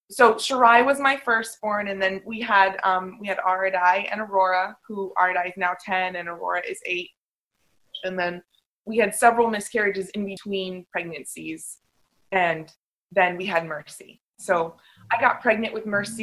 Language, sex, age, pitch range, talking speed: English, female, 20-39, 165-195 Hz, 165 wpm